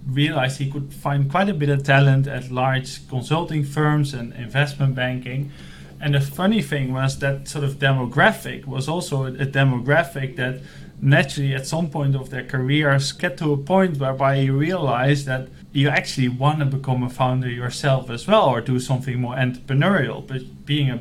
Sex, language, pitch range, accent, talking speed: male, English, 130-150 Hz, Dutch, 180 wpm